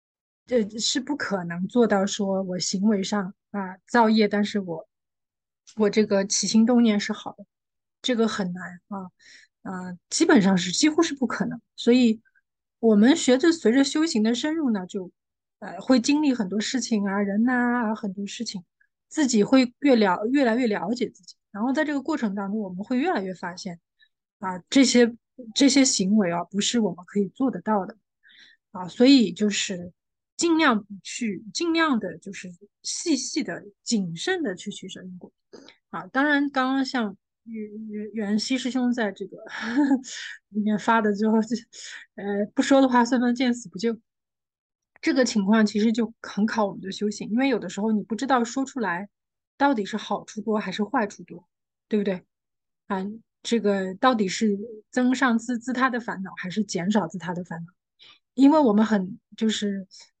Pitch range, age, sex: 200-250 Hz, 20-39, female